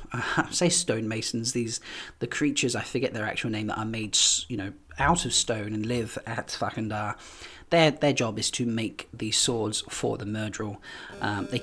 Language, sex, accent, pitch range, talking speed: English, male, British, 105-130 Hz, 185 wpm